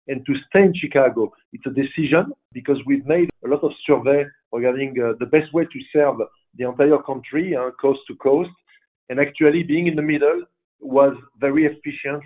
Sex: male